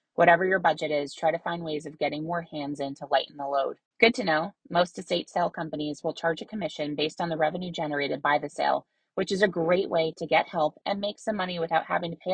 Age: 30-49